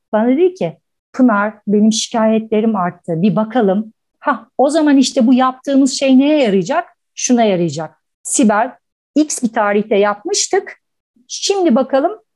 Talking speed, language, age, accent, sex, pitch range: 130 wpm, English, 50-69, Turkish, female, 205-285 Hz